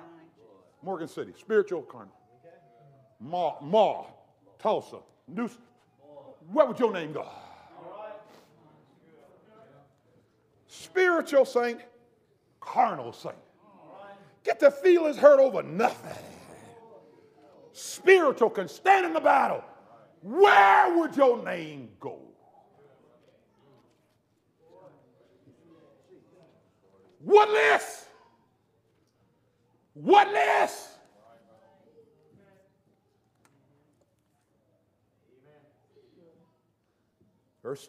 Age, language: 50-69, English